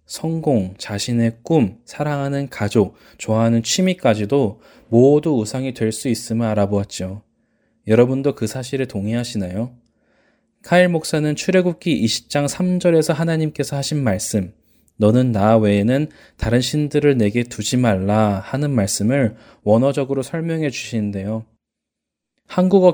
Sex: male